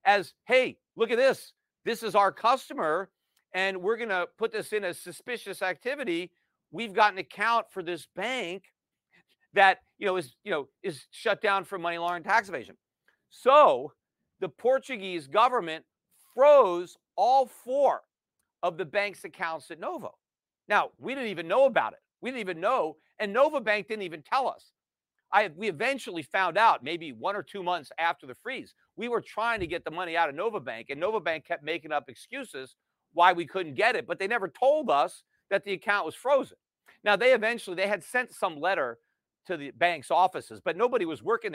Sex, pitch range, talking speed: male, 170-230 Hz, 195 wpm